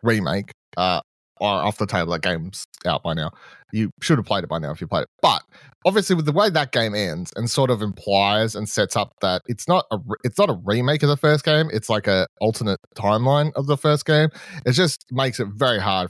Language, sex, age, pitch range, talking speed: English, male, 30-49, 100-145 Hz, 240 wpm